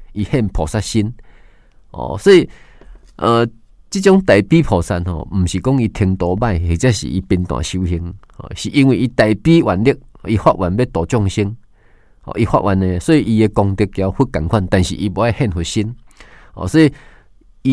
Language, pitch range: Chinese, 95-130 Hz